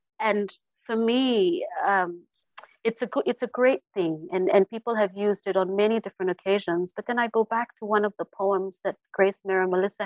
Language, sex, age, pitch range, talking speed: English, female, 30-49, 185-220 Hz, 215 wpm